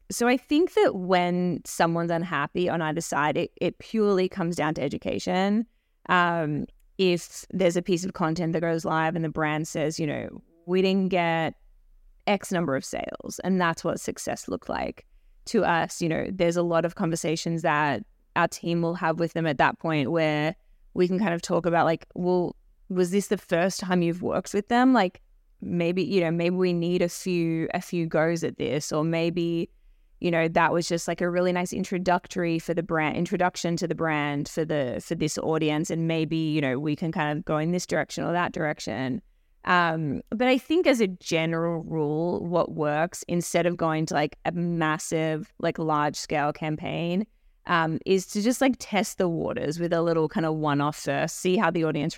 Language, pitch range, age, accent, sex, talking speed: English, 160-180 Hz, 20-39, Australian, female, 205 wpm